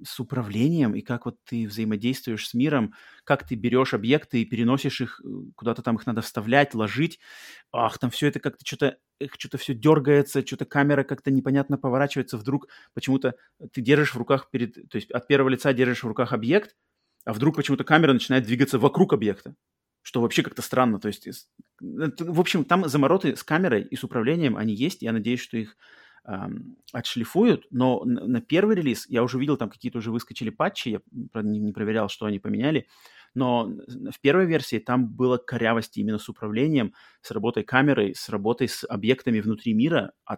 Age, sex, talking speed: 30-49, male, 180 wpm